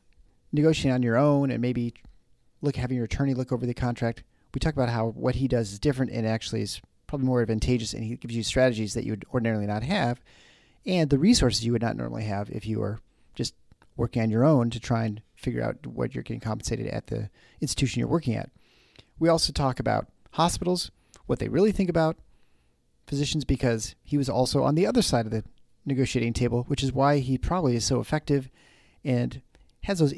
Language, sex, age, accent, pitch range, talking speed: English, male, 40-59, American, 115-150 Hz, 210 wpm